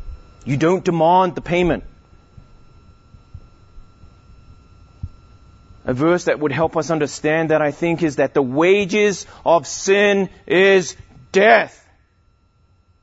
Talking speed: 105 wpm